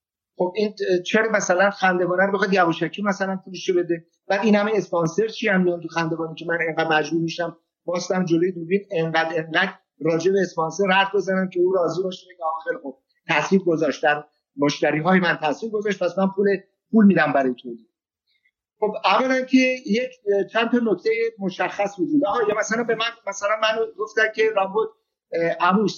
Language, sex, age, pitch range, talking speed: Persian, male, 50-69, 170-220 Hz, 170 wpm